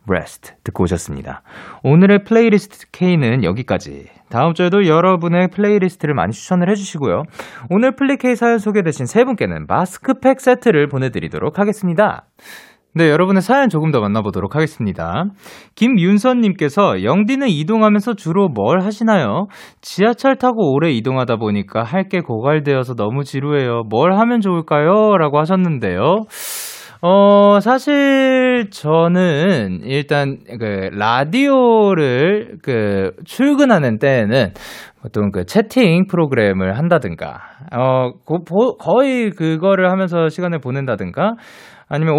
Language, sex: Korean, male